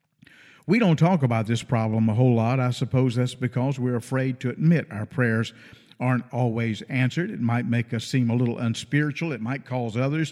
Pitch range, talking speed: 125-155 Hz, 200 wpm